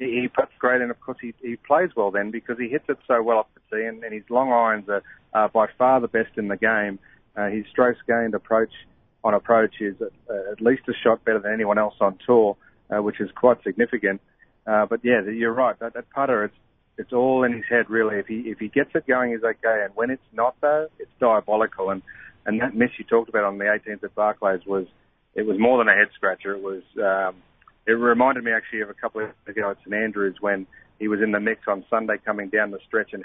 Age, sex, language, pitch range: 40-59, male, English, 105-125 Hz